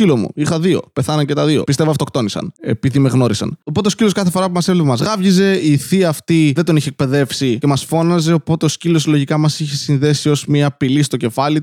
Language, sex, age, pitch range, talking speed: Greek, male, 20-39, 130-175 Hz, 230 wpm